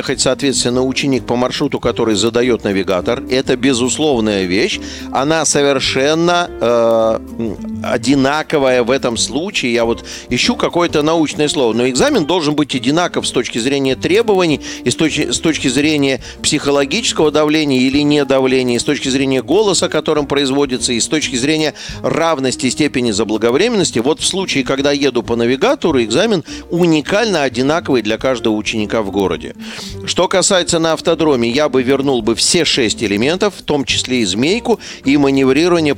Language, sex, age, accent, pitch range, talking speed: Russian, male, 40-59, native, 125-160 Hz, 150 wpm